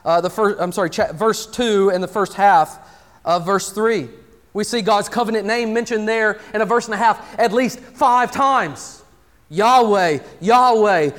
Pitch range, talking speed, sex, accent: 185-240 Hz, 180 wpm, male, American